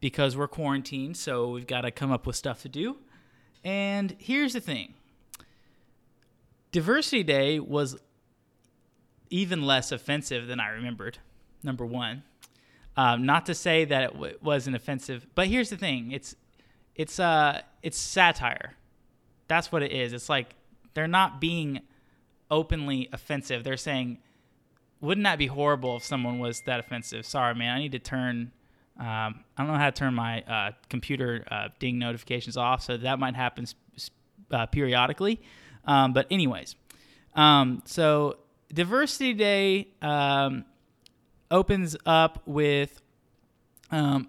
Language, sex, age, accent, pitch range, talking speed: English, male, 20-39, American, 125-150 Hz, 145 wpm